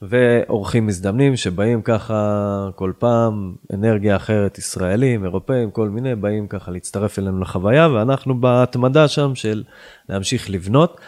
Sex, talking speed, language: male, 125 wpm, Hebrew